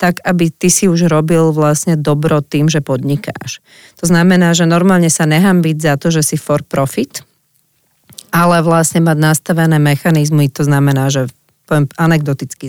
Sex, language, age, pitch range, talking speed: female, Slovak, 30-49, 145-165 Hz, 155 wpm